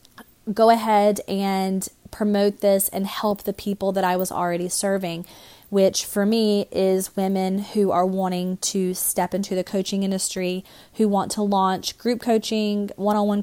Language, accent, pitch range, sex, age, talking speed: English, American, 190-210 Hz, female, 20-39, 155 wpm